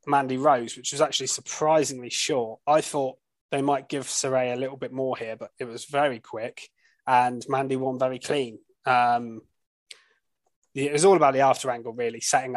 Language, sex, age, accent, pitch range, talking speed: English, male, 20-39, British, 125-145 Hz, 180 wpm